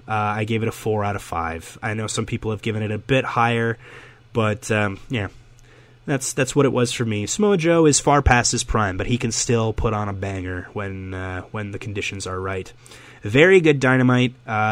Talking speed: 220 wpm